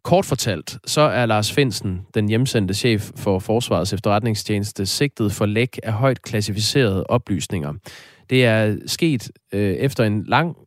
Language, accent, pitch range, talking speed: Danish, native, 105-130 Hz, 140 wpm